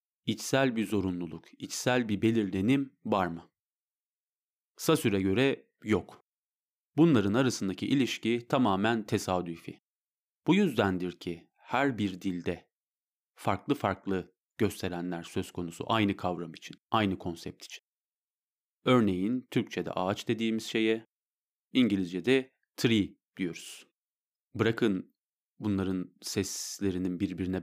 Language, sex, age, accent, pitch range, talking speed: Turkish, male, 40-59, native, 90-120 Hz, 100 wpm